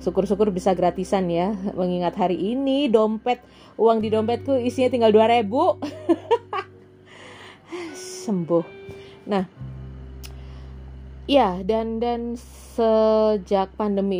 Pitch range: 170-220 Hz